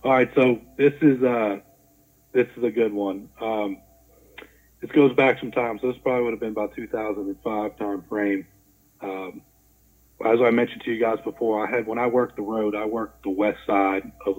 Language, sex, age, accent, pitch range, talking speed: English, male, 30-49, American, 100-120 Hz, 200 wpm